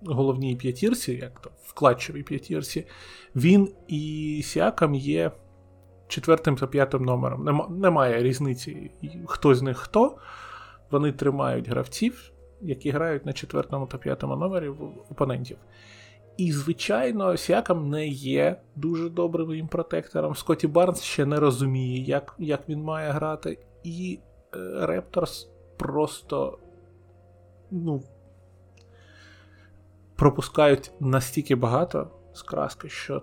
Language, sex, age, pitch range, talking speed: Ukrainian, male, 20-39, 105-155 Hz, 105 wpm